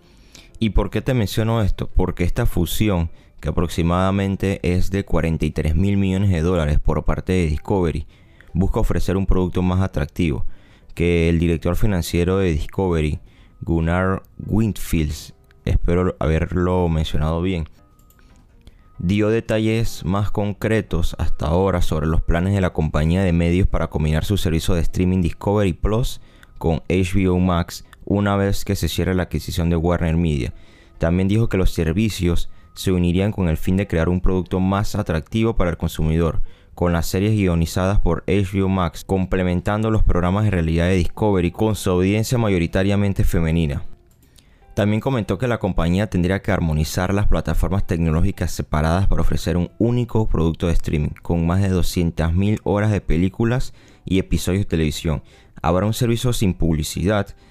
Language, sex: Spanish, male